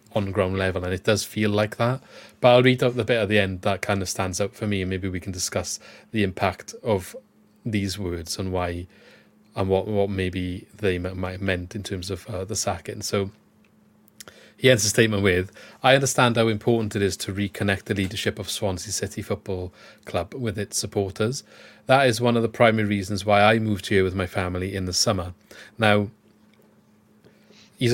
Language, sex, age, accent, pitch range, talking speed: English, male, 30-49, British, 95-110 Hz, 200 wpm